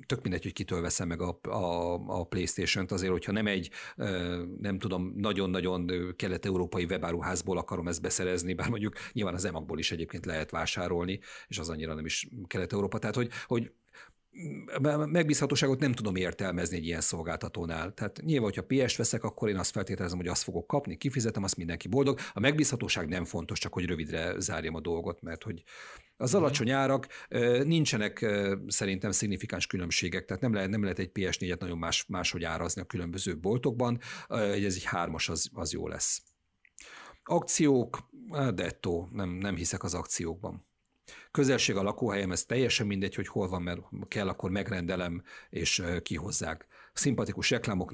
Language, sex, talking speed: Hungarian, male, 160 wpm